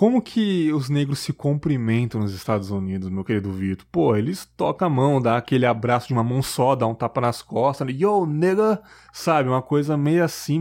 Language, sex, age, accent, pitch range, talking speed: Portuguese, male, 20-39, Brazilian, 120-155 Hz, 205 wpm